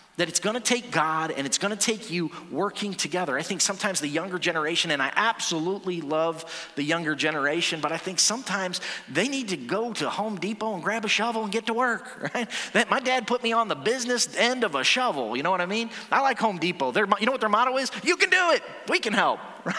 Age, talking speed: 30-49, 235 wpm